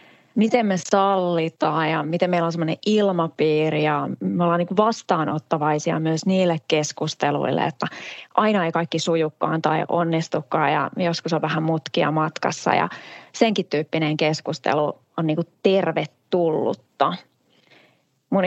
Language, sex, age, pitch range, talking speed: Finnish, female, 20-39, 160-190 Hz, 125 wpm